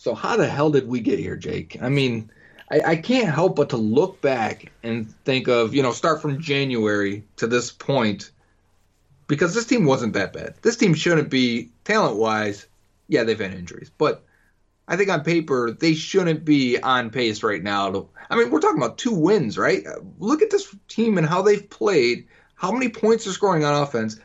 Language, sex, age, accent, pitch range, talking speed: English, male, 30-49, American, 120-185 Hz, 200 wpm